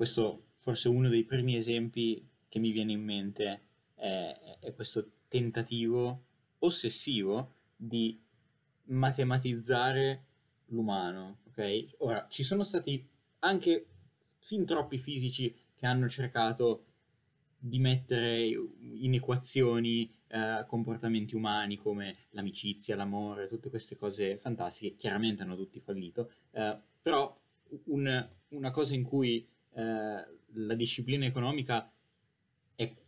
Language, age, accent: Italian, 10-29, native